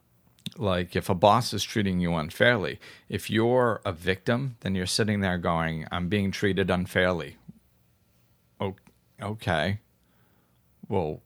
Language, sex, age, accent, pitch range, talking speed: English, male, 40-59, American, 85-105 Hz, 125 wpm